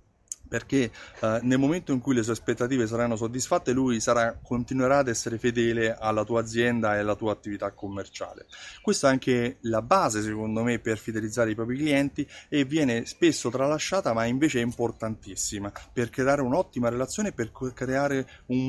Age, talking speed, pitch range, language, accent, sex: 30-49, 170 wpm, 115-140 Hz, Italian, native, male